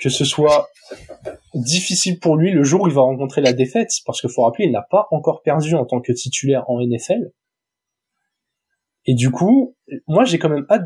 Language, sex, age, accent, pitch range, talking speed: French, male, 20-39, French, 125-175 Hz, 205 wpm